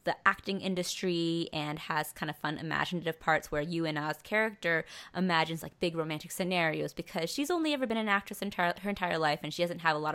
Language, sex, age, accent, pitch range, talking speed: English, female, 20-39, American, 155-205 Hz, 220 wpm